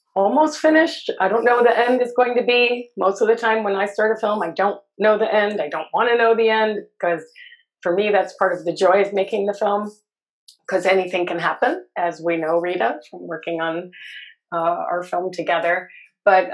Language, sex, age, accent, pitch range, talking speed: English, female, 30-49, American, 170-215 Hz, 220 wpm